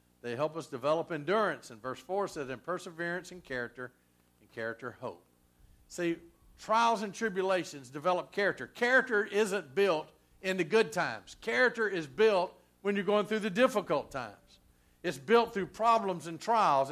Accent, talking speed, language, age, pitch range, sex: American, 160 wpm, English, 50-69, 135-220 Hz, male